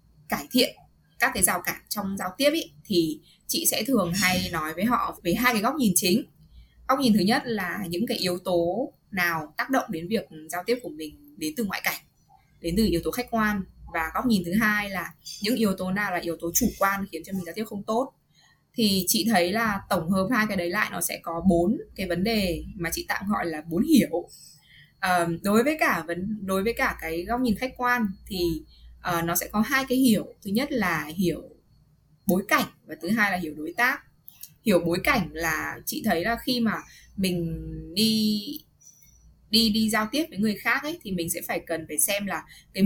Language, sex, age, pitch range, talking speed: Vietnamese, female, 20-39, 170-230 Hz, 225 wpm